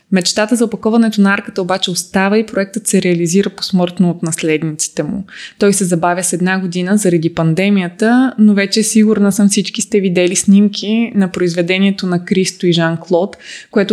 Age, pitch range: 20-39, 175-210 Hz